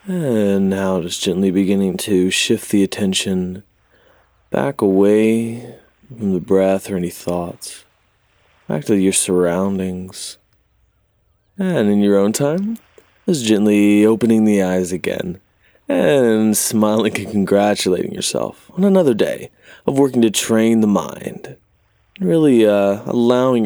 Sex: male